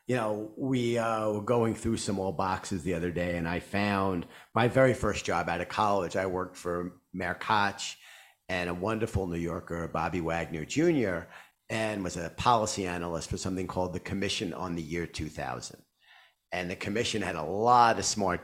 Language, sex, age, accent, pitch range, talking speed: English, male, 50-69, American, 90-115 Hz, 190 wpm